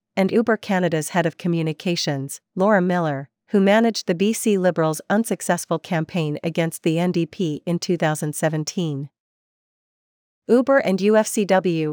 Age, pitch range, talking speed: 40-59, 160-200 Hz, 115 wpm